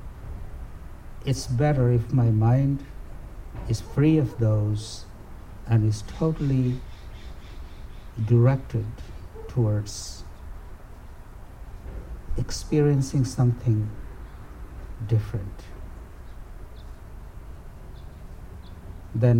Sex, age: male, 60-79